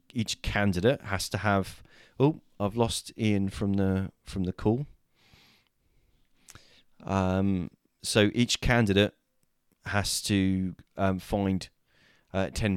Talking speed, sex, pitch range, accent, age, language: 115 wpm, male, 90-110 Hz, British, 20-39, English